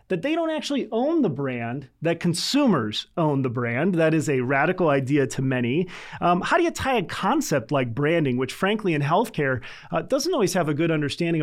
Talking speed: 205 wpm